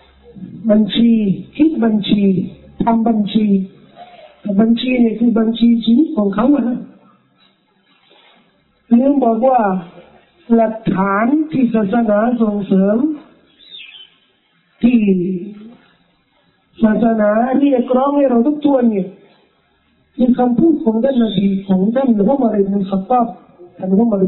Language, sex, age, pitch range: Thai, male, 50-69, 195-245 Hz